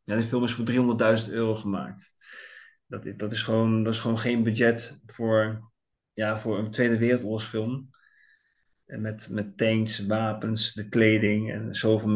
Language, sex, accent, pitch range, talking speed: Dutch, male, Dutch, 115-150 Hz, 160 wpm